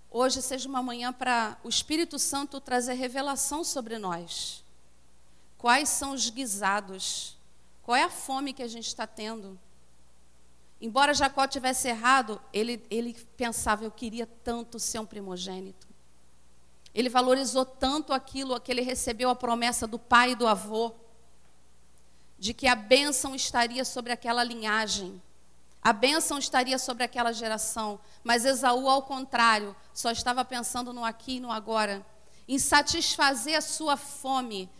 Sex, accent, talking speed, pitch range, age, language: female, Brazilian, 145 wpm, 215-275 Hz, 40-59, English